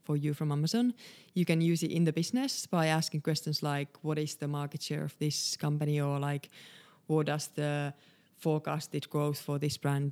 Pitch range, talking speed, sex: 145-165 Hz, 190 wpm, female